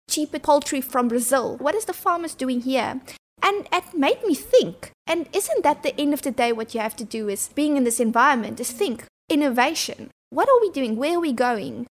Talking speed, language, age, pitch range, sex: 220 wpm, English, 20-39, 240-295 Hz, female